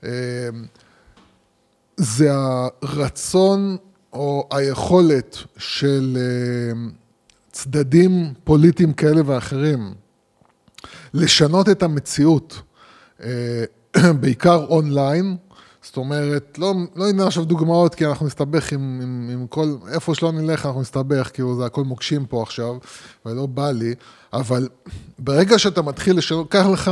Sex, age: male, 20-39